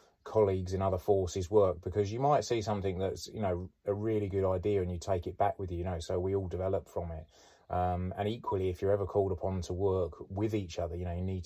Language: English